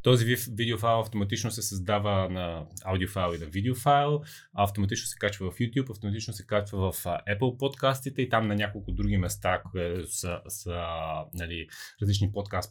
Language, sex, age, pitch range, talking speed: Bulgarian, male, 20-39, 100-115 Hz, 160 wpm